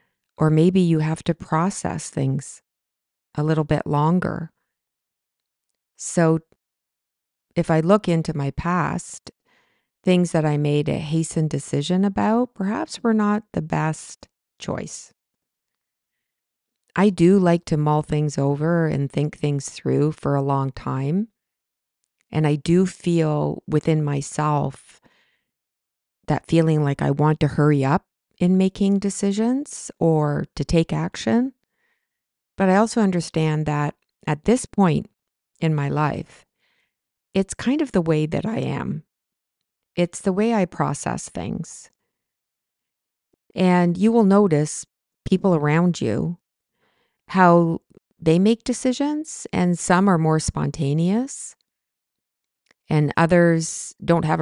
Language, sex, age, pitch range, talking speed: English, female, 40-59, 150-195 Hz, 125 wpm